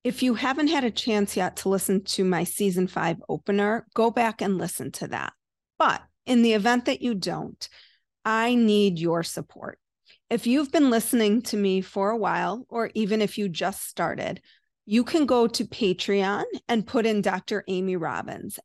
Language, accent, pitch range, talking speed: English, American, 195-235 Hz, 185 wpm